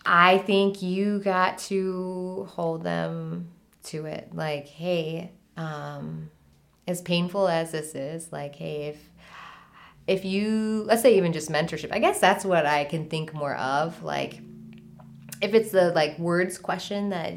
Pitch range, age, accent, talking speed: 150-195 Hz, 20-39, American, 150 wpm